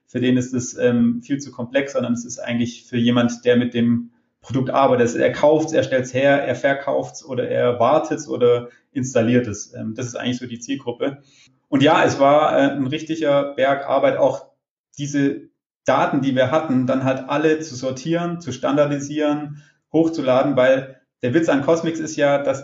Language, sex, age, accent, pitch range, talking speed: German, male, 30-49, German, 130-150 Hz, 190 wpm